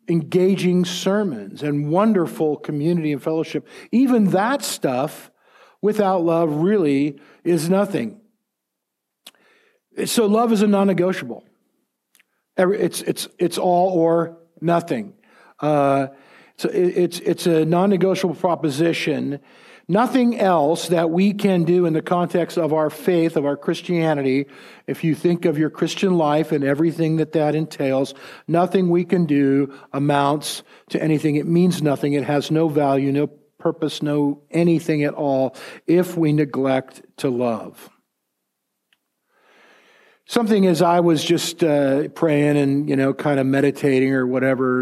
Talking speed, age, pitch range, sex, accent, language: 135 wpm, 50-69, 145-180 Hz, male, American, English